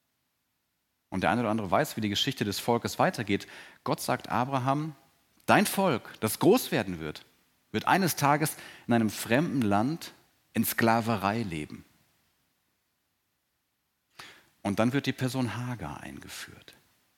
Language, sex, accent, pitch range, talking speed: German, male, German, 105-130 Hz, 135 wpm